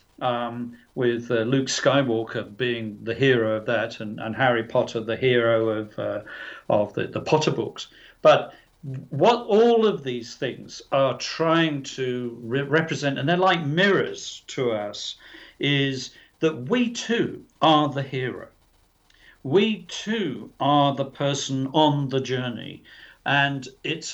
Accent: British